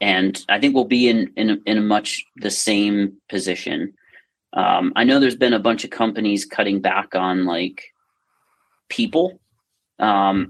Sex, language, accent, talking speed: male, English, American, 160 wpm